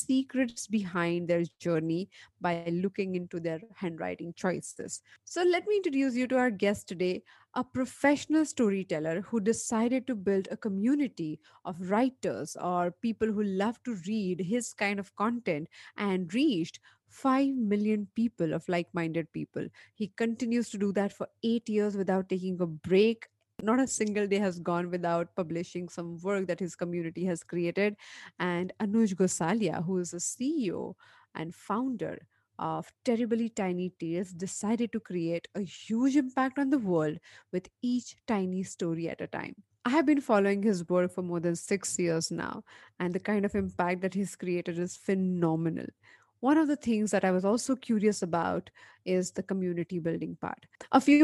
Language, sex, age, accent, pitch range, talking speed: English, female, 30-49, Indian, 175-230 Hz, 165 wpm